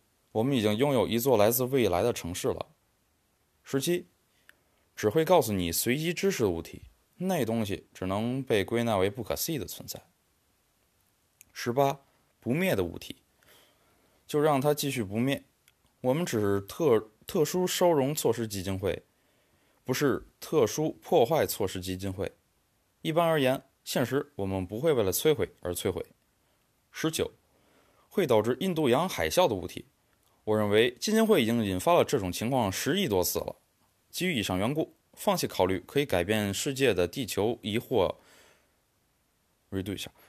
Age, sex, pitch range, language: 20-39, male, 95-150 Hz, Chinese